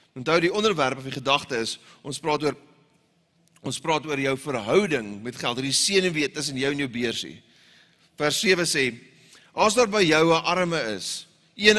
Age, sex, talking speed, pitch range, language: 30-49, male, 190 wpm, 135-175 Hz, English